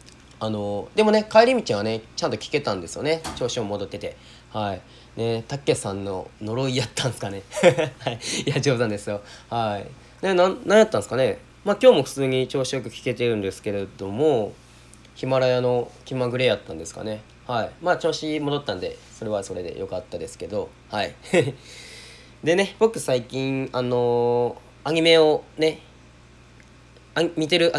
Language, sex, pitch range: Japanese, male, 110-170 Hz